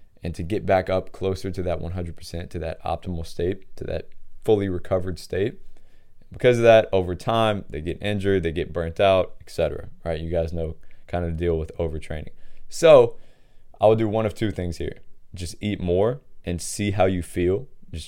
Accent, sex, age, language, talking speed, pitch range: American, male, 20-39, English, 195 wpm, 85-95 Hz